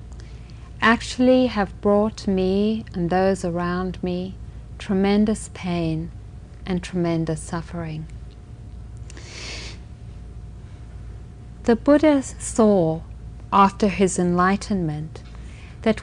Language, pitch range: English, 160-240 Hz